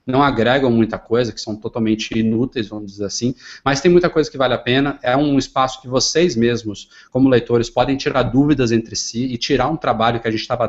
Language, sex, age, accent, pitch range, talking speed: Portuguese, male, 20-39, Brazilian, 115-145 Hz, 225 wpm